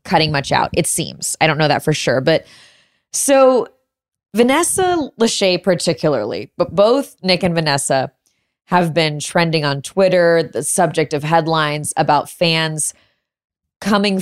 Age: 20-39